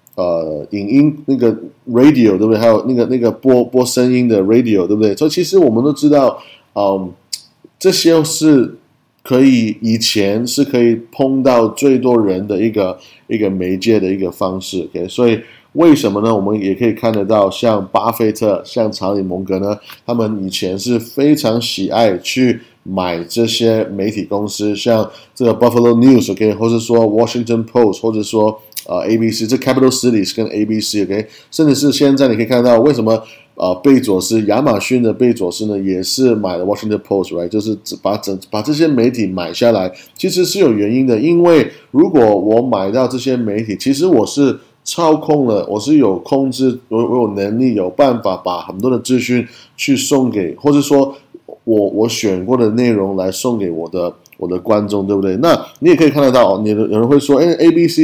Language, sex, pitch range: Chinese, male, 105-130 Hz